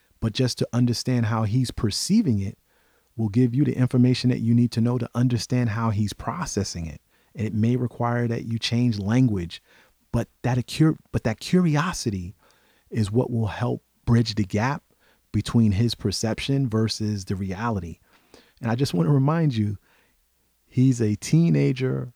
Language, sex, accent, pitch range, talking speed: English, male, American, 95-125 Hz, 165 wpm